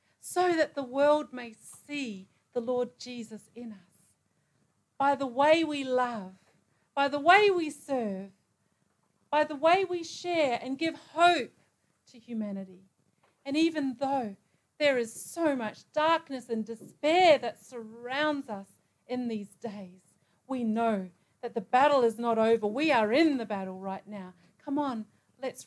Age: 40-59